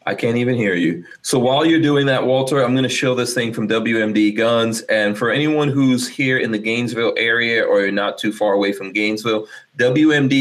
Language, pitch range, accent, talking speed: English, 100-125 Hz, American, 215 wpm